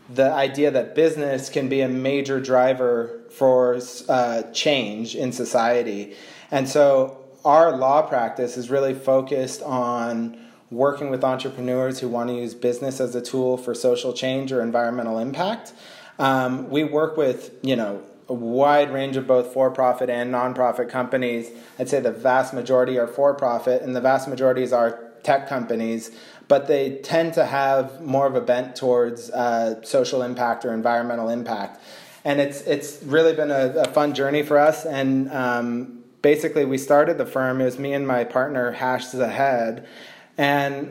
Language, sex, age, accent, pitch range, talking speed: English, male, 30-49, American, 125-140 Hz, 165 wpm